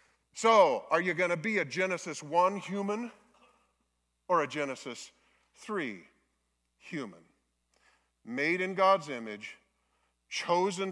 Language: English